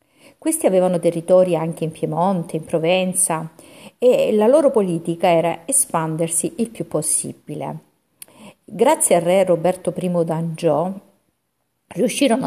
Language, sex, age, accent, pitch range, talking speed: Italian, female, 50-69, native, 165-195 Hz, 115 wpm